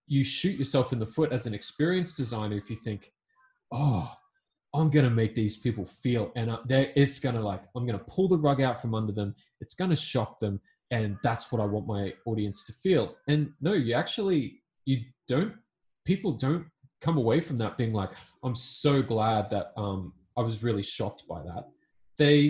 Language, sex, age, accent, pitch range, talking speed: English, male, 20-39, Australian, 110-145 Hz, 205 wpm